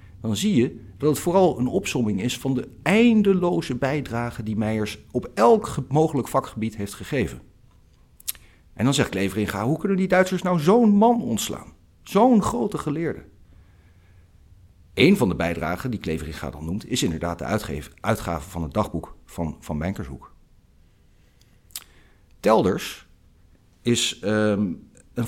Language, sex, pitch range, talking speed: Dutch, male, 90-140 Hz, 140 wpm